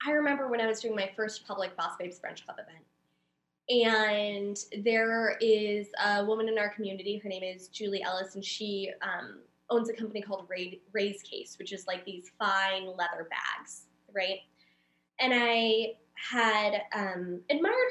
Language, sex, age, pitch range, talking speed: English, female, 10-29, 185-235 Hz, 165 wpm